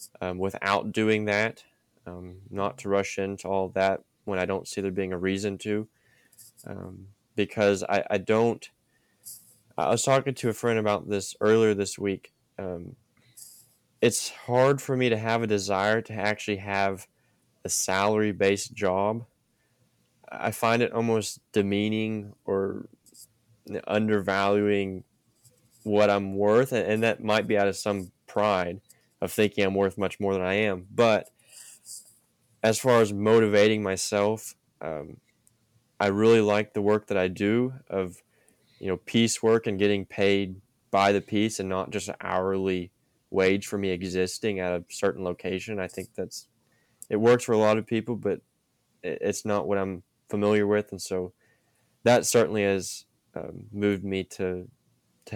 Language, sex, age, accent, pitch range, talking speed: English, male, 20-39, American, 95-110 Hz, 155 wpm